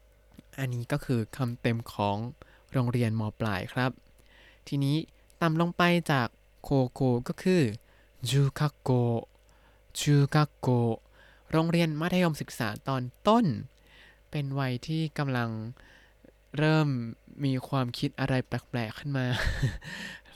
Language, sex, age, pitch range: Thai, male, 20-39, 120-150 Hz